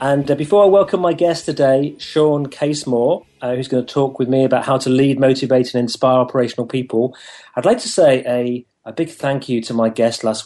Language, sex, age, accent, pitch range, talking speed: English, male, 30-49, British, 125-160 Hz, 225 wpm